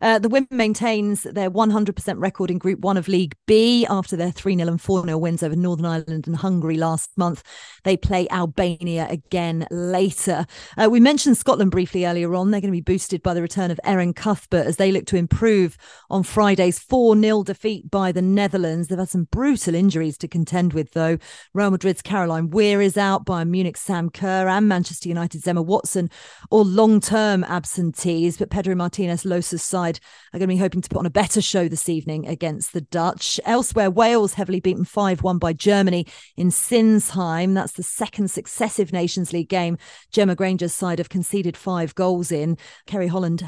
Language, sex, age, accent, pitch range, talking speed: English, female, 40-59, British, 170-200 Hz, 185 wpm